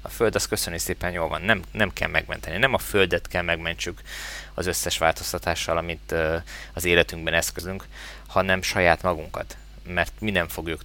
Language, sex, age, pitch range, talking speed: Hungarian, male, 20-39, 80-95 Hz, 170 wpm